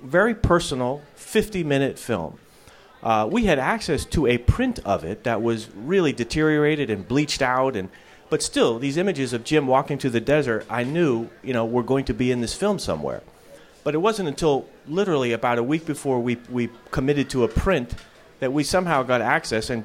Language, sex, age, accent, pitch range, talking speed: English, male, 30-49, American, 120-155 Hz, 195 wpm